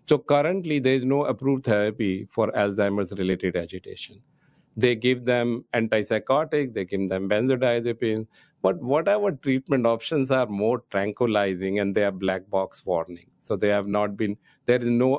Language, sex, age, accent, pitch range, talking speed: English, male, 50-69, Indian, 105-135 Hz, 155 wpm